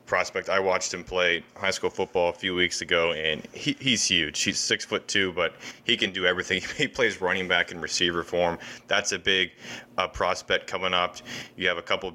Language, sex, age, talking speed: English, male, 20-39, 210 wpm